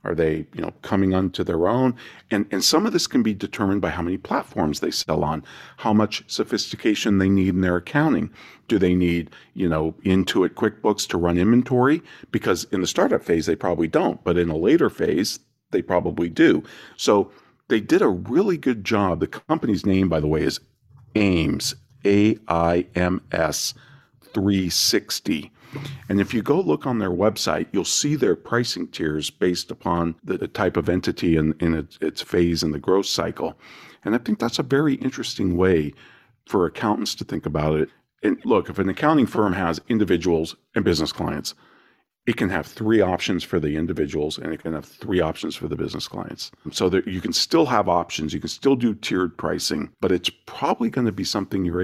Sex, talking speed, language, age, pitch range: male, 195 wpm, English, 50-69, 85-110 Hz